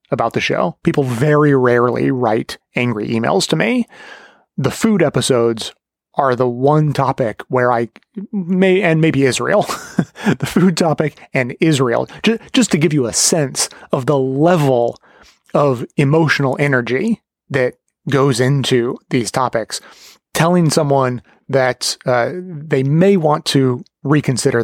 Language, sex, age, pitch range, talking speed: English, male, 30-49, 125-155 Hz, 135 wpm